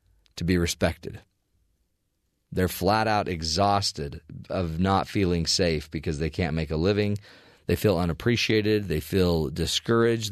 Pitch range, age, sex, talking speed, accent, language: 85-110 Hz, 40-59, male, 135 wpm, American, English